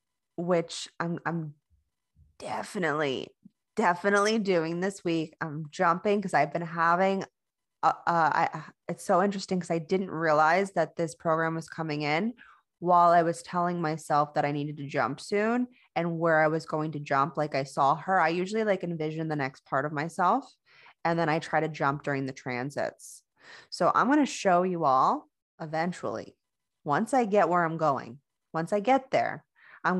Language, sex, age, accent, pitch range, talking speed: English, female, 20-39, American, 150-185 Hz, 180 wpm